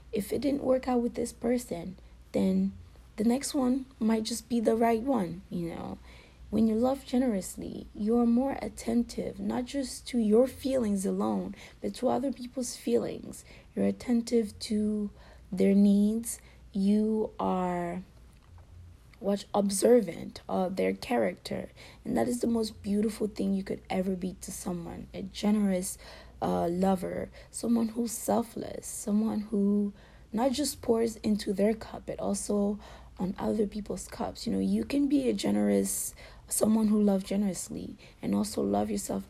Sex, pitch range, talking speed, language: female, 190-235 Hz, 150 wpm, English